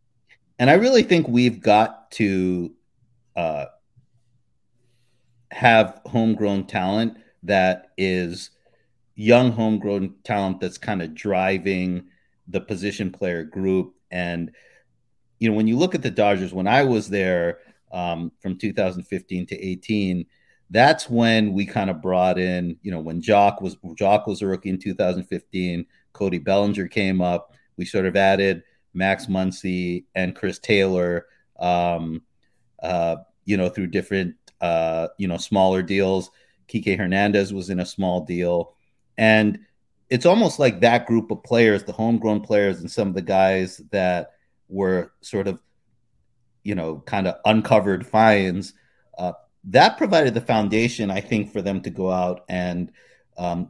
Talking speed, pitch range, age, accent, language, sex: 145 wpm, 90-110 Hz, 40-59, American, English, male